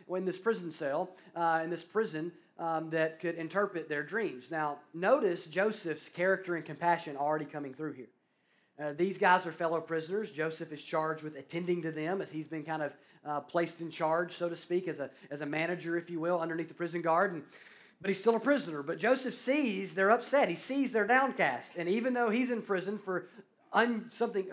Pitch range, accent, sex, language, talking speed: 160-210 Hz, American, male, English, 210 wpm